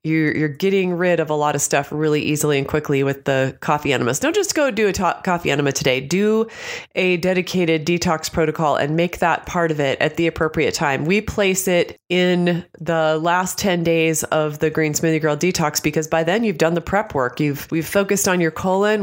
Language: English